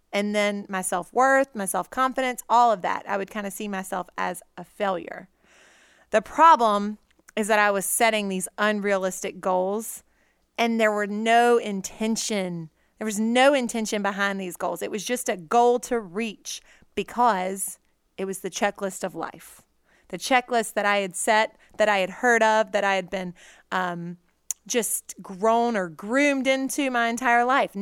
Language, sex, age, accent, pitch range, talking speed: English, female, 30-49, American, 195-250 Hz, 170 wpm